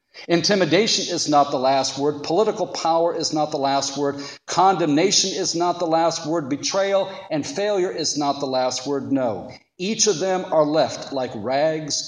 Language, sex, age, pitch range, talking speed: English, male, 50-69, 115-160 Hz, 175 wpm